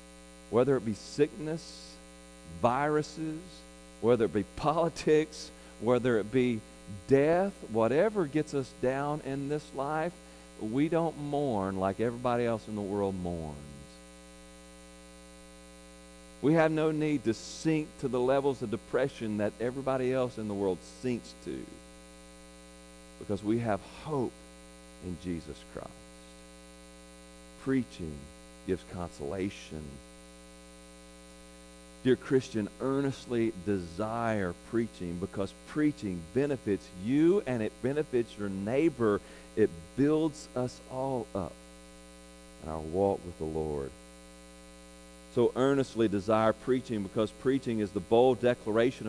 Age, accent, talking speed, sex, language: 50-69, American, 115 wpm, male, English